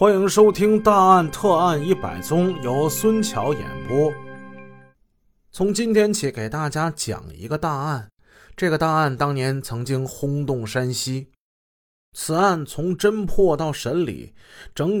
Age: 30-49